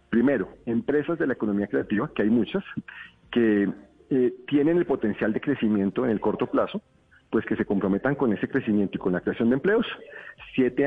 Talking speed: 190 wpm